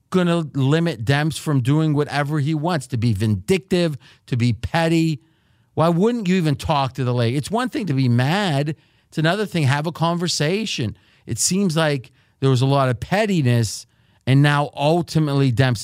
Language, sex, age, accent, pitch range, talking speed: English, male, 40-59, American, 115-145 Hz, 180 wpm